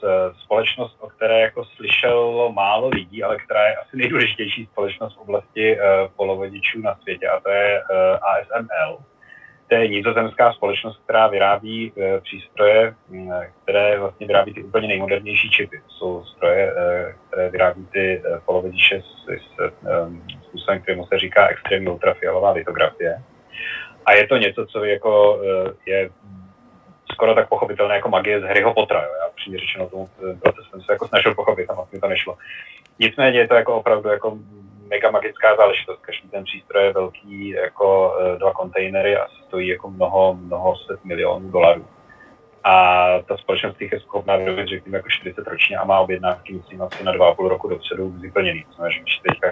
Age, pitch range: 30-49, 95-115 Hz